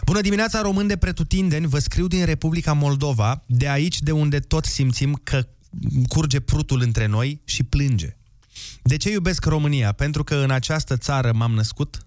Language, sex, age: Romanian, male, 20-39